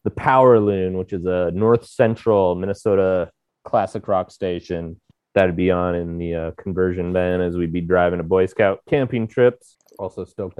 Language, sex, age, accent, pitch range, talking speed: English, male, 30-49, American, 90-115 Hz, 175 wpm